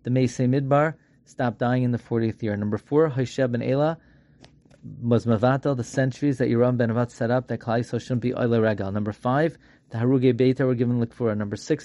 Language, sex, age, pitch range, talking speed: English, male, 30-49, 120-135 Hz, 190 wpm